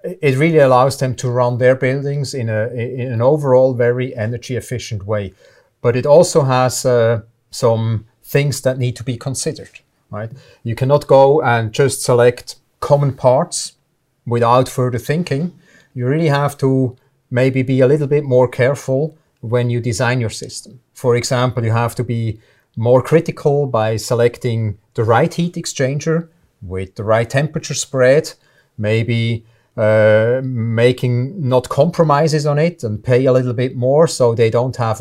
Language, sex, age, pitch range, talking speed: English, male, 40-59, 120-145 Hz, 155 wpm